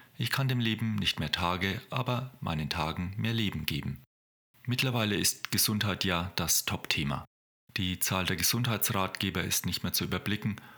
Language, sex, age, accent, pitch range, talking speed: German, male, 40-59, German, 90-120 Hz, 155 wpm